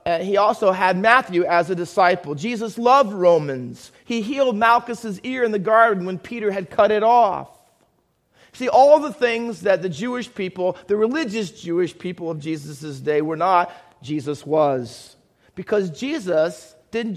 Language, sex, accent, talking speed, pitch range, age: English, male, American, 165 wpm, 160-220 Hz, 40-59